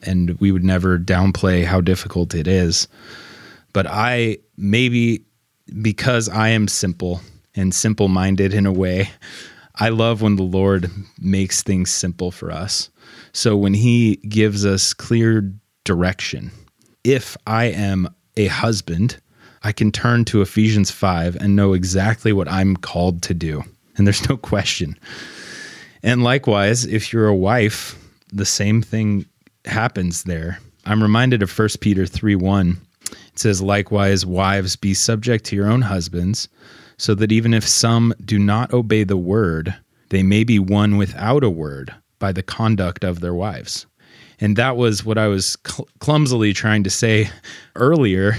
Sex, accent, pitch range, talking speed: male, American, 95-110 Hz, 155 wpm